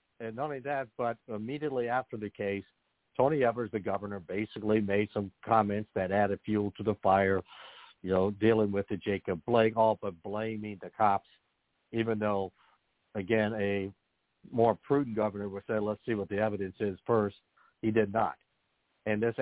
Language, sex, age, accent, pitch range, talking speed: English, male, 60-79, American, 95-110 Hz, 175 wpm